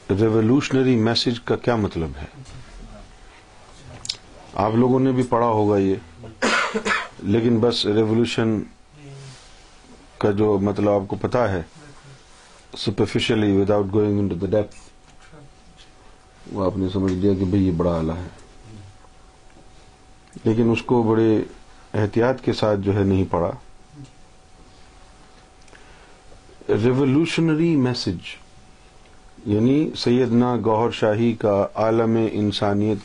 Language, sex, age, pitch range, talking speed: Urdu, male, 50-69, 95-125 Hz, 80 wpm